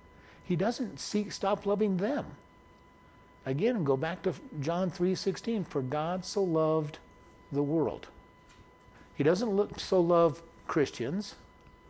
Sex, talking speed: male, 125 wpm